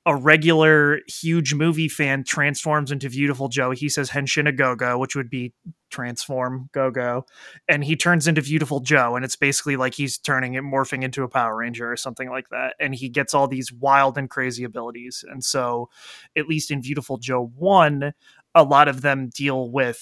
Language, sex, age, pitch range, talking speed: English, male, 20-39, 130-150 Hz, 190 wpm